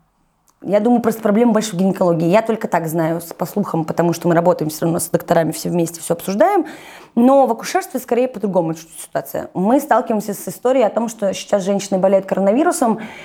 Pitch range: 170-210 Hz